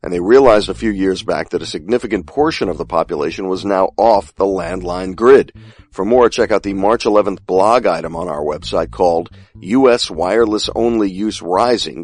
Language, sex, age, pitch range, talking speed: English, male, 50-69, 95-125 Hz, 185 wpm